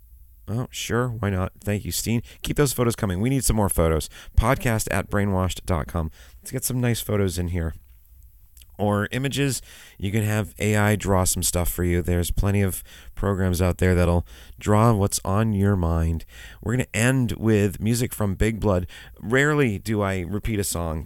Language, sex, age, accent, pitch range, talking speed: English, male, 30-49, American, 85-110 Hz, 180 wpm